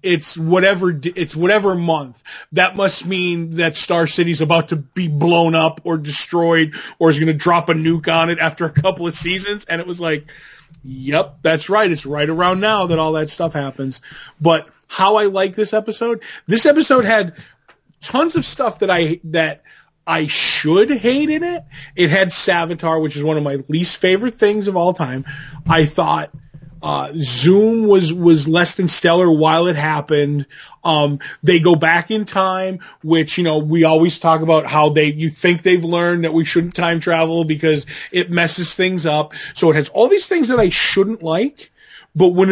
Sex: male